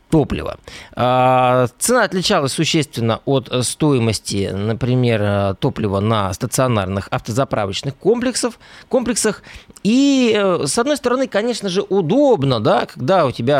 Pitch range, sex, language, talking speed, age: 115-170 Hz, male, Russian, 95 wpm, 20-39